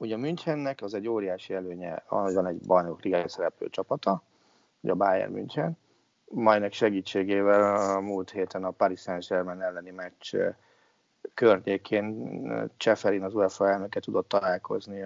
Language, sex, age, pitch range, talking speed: Hungarian, male, 30-49, 95-105 Hz, 135 wpm